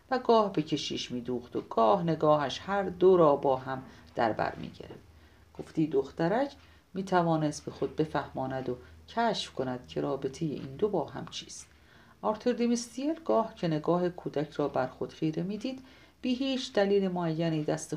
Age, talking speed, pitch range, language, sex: 50-69, 165 wpm, 135-200 Hz, English, female